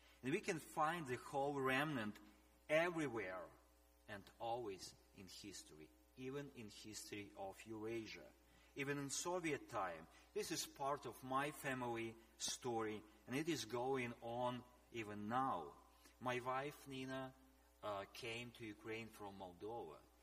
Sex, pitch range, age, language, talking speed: male, 95-130 Hz, 30-49, English, 130 wpm